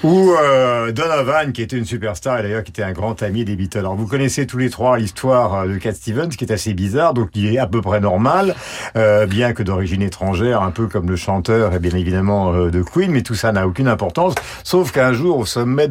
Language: French